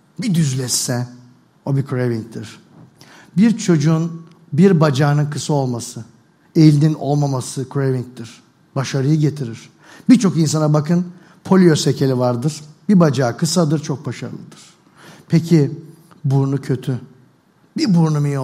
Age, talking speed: 60-79, 105 wpm